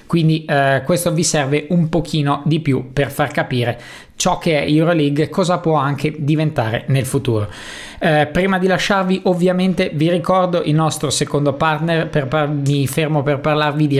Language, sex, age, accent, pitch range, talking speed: Italian, male, 20-39, native, 145-170 Hz, 170 wpm